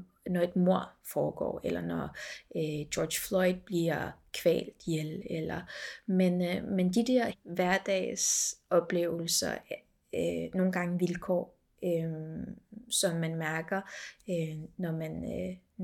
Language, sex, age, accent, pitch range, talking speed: Danish, female, 20-39, native, 170-200 Hz, 115 wpm